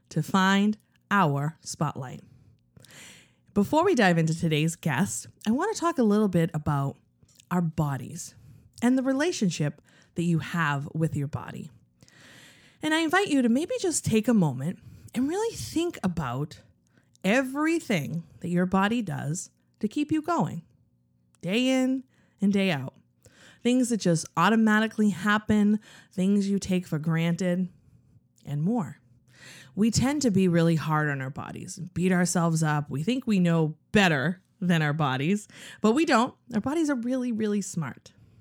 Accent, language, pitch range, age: American, English, 150-220 Hz, 30-49